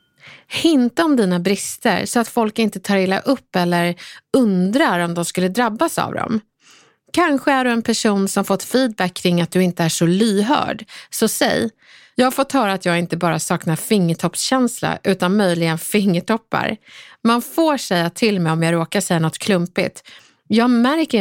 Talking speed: 175 wpm